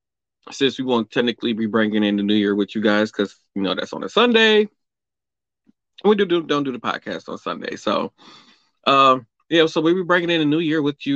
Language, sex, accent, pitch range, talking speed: English, male, American, 110-140 Hz, 230 wpm